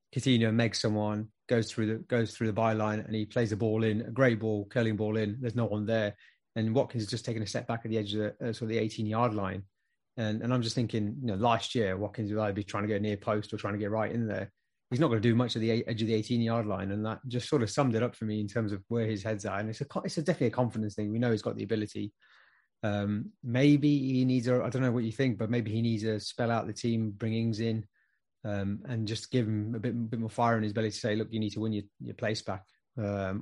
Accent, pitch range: British, 105-120 Hz